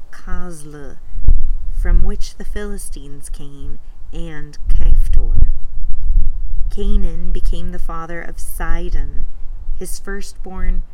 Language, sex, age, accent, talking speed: English, female, 30-49, American, 90 wpm